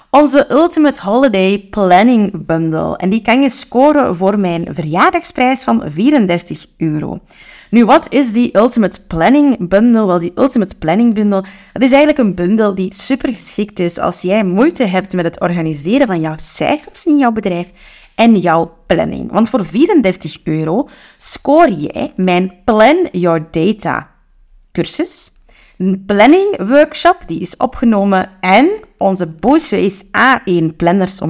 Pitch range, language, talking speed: 175-265 Hz, Dutch, 145 wpm